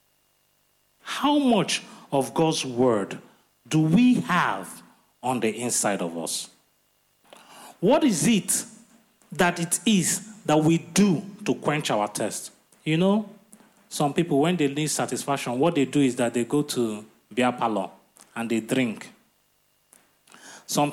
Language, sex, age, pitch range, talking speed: English, male, 30-49, 140-215 Hz, 135 wpm